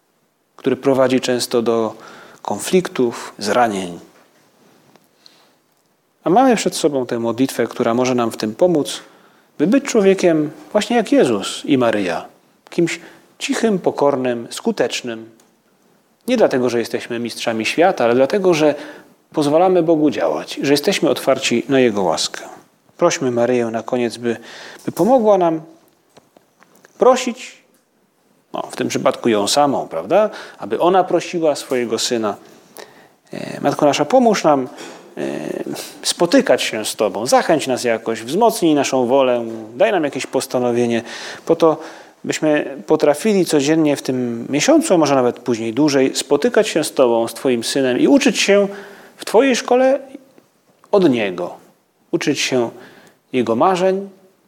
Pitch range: 120-185 Hz